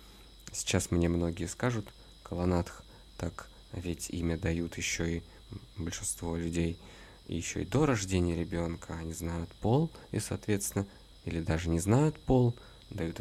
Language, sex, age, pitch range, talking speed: Russian, male, 20-39, 85-105 Hz, 130 wpm